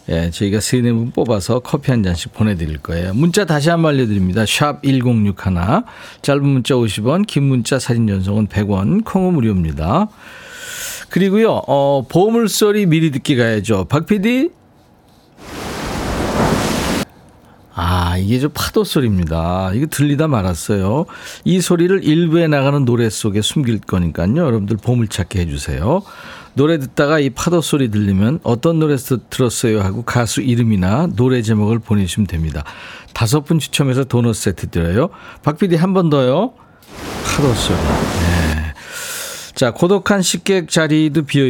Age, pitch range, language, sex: 50-69, 105-160 Hz, Korean, male